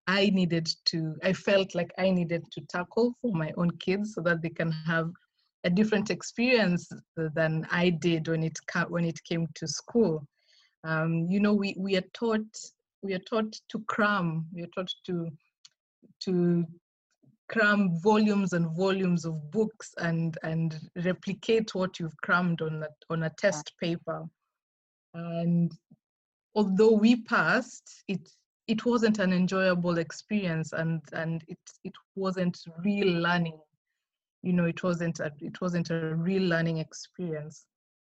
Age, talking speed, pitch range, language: 20-39, 150 wpm, 165-205 Hz, French